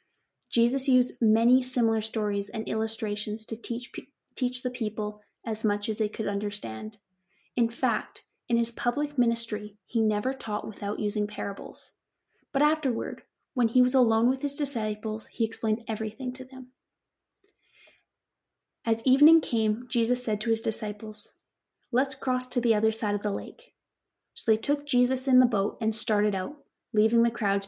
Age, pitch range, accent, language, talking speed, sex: 10-29, 210-250 Hz, American, English, 160 wpm, female